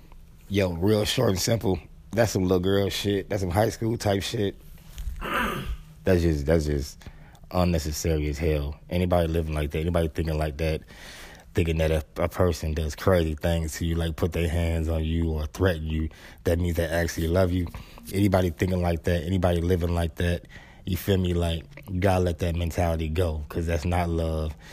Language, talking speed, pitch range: English, 190 wpm, 80-90 Hz